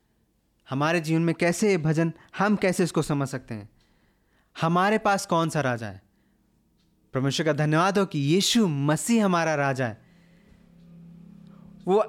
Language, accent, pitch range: Hindi, native, 150-190 Hz